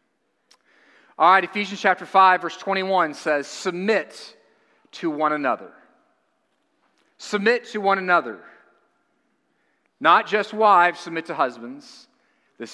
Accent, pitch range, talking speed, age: American, 165-220 Hz, 110 wpm, 40-59